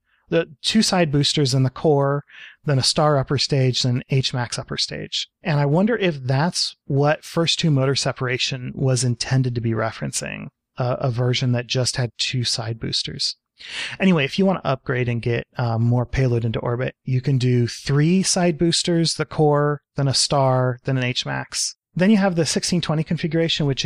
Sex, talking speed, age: male, 185 wpm, 30-49